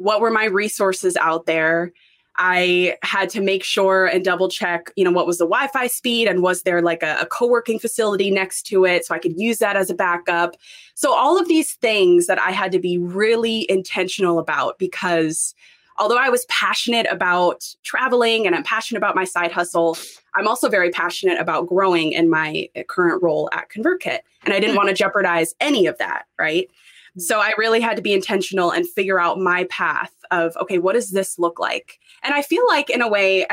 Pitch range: 175-225 Hz